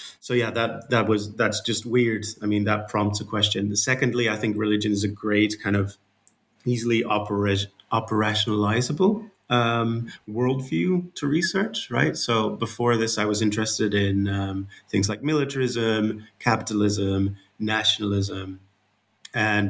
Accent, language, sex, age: British, English, male, 30-49